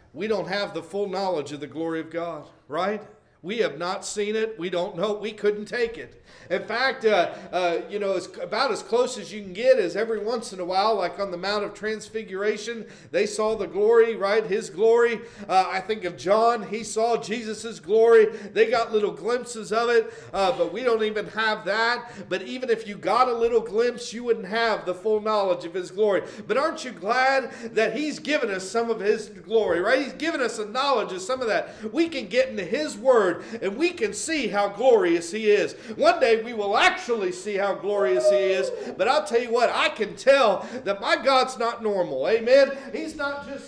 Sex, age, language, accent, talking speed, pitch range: male, 50-69, English, American, 215 wpm, 210-265 Hz